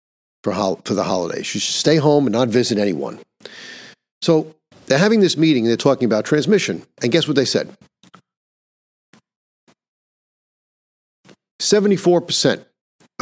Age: 50-69